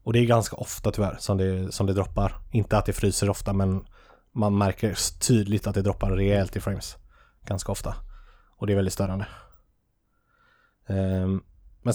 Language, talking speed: Swedish, 165 wpm